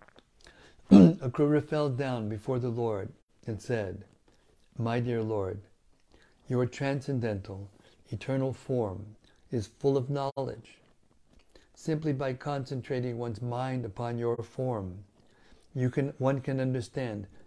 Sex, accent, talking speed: male, American, 110 wpm